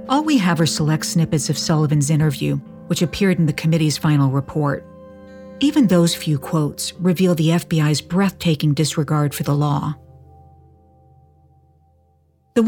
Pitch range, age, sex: 140-180 Hz, 50-69, female